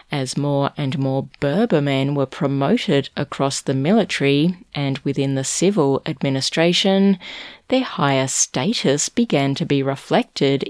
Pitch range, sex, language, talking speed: 140-175 Hz, female, English, 130 wpm